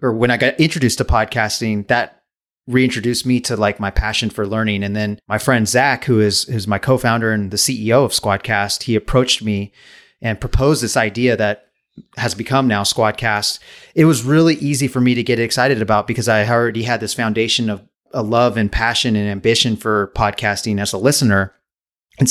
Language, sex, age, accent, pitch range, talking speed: English, male, 30-49, American, 105-125 Hz, 195 wpm